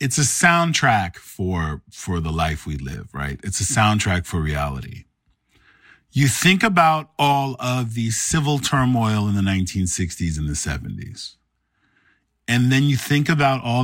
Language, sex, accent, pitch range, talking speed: English, male, American, 100-150 Hz, 150 wpm